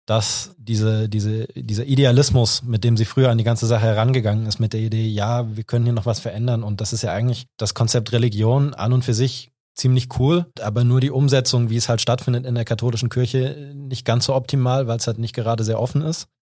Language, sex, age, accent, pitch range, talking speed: German, male, 20-39, German, 110-130 Hz, 220 wpm